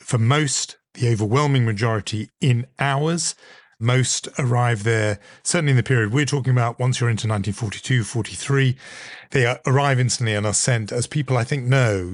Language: English